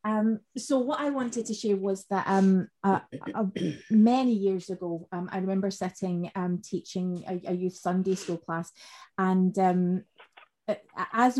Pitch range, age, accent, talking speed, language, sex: 185-215 Hz, 20-39, British, 165 wpm, English, female